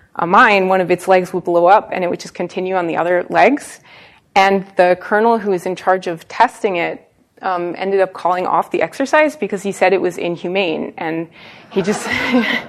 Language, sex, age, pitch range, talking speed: English, female, 20-39, 180-230 Hz, 210 wpm